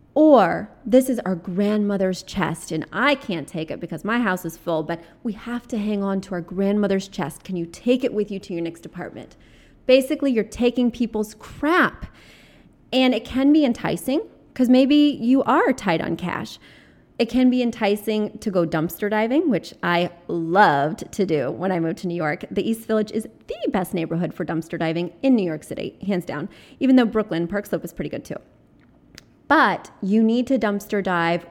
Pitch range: 175-235 Hz